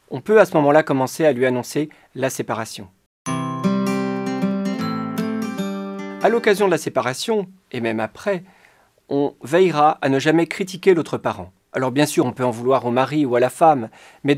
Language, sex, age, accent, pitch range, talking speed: French, male, 40-59, French, 130-175 Hz, 170 wpm